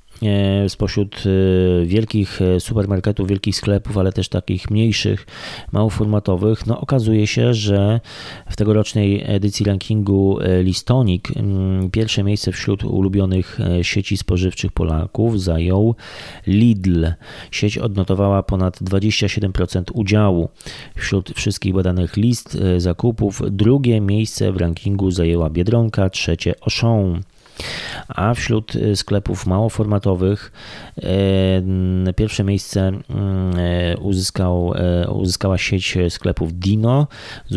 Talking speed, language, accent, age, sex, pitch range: 95 wpm, Polish, native, 30-49, male, 90-110 Hz